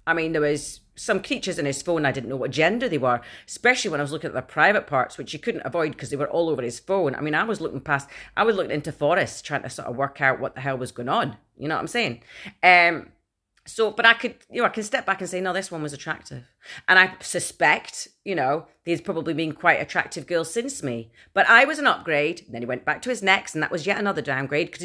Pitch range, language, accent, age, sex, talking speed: 135-185 Hz, English, British, 30-49, female, 275 wpm